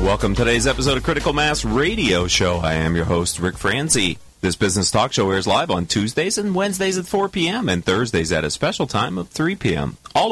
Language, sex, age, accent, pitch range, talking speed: English, male, 40-59, American, 95-155 Hz, 220 wpm